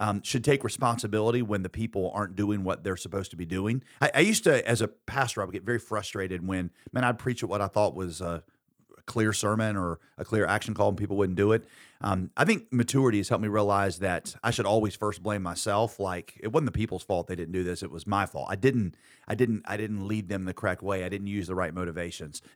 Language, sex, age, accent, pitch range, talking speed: English, male, 40-59, American, 95-115 Hz, 255 wpm